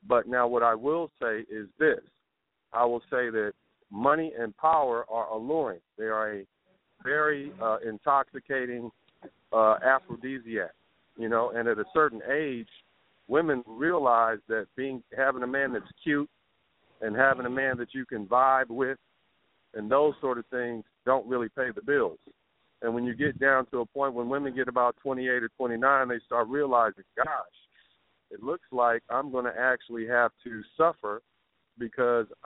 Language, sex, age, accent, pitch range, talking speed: English, male, 50-69, American, 115-135 Hz, 165 wpm